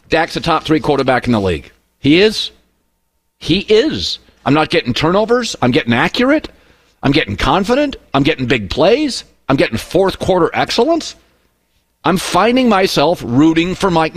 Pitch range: 150-215 Hz